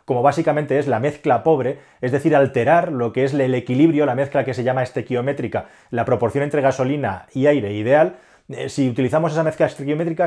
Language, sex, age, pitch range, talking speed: Spanish, male, 30-49, 125-155 Hz, 185 wpm